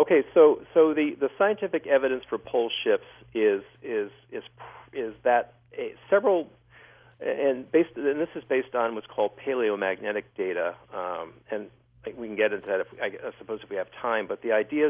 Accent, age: American, 50-69